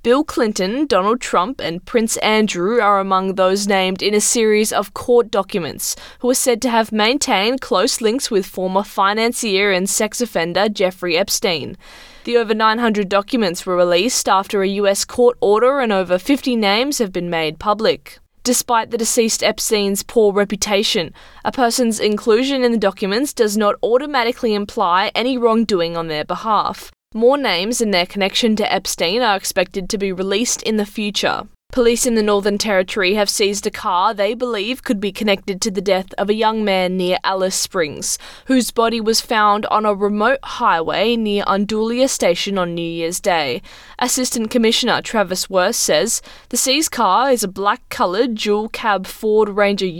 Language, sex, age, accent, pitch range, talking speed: English, female, 10-29, Australian, 195-240 Hz, 170 wpm